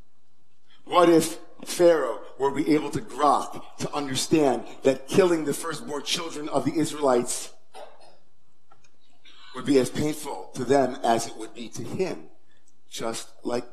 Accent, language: American, English